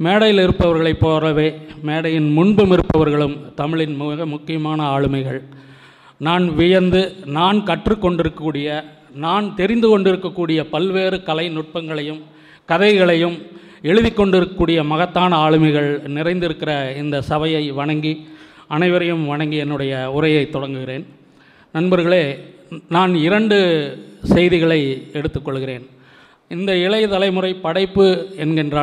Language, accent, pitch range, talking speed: Tamil, native, 150-185 Hz, 90 wpm